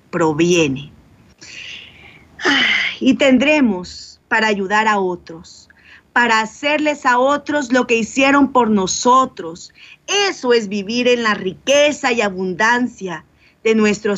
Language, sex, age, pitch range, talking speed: Spanish, female, 40-59, 190-265 Hz, 115 wpm